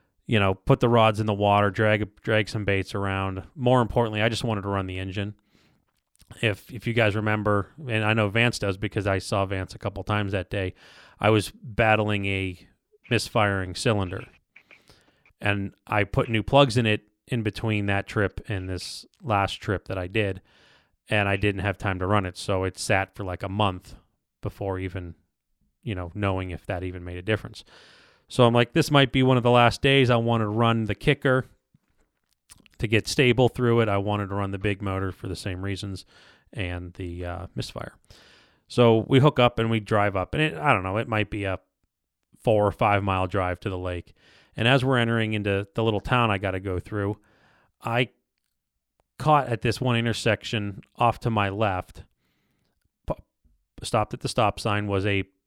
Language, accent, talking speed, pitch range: English, American, 200 wpm, 95-115 Hz